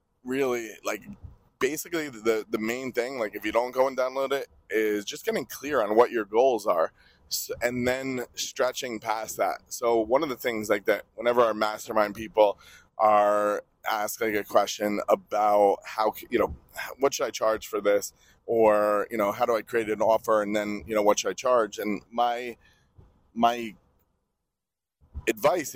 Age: 20-39